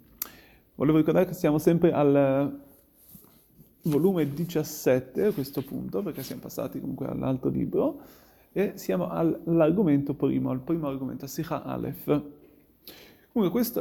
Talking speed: 125 wpm